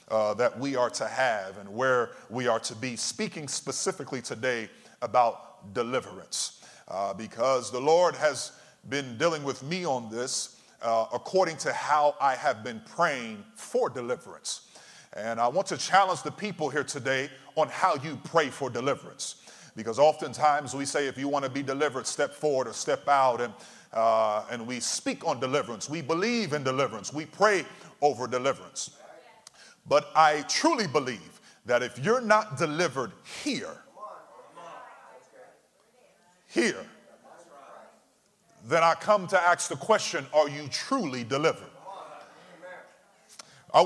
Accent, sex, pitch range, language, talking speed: American, male, 130-175 Hz, English, 145 wpm